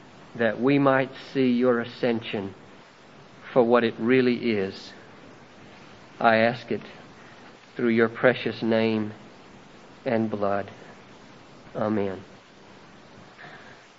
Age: 50-69